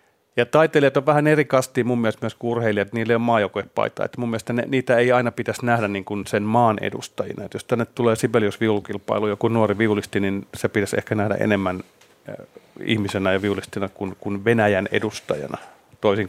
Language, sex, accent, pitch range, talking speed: Finnish, male, native, 100-120 Hz, 175 wpm